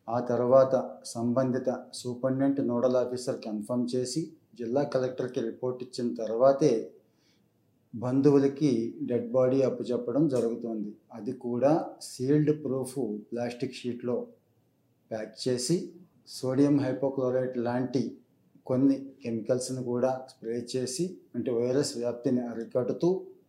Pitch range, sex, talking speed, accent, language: 120-135 Hz, male, 80 wpm, native, Telugu